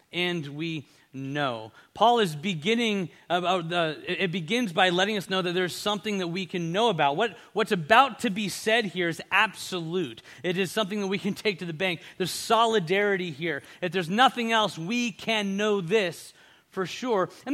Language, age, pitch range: English, 30-49, 170-215 Hz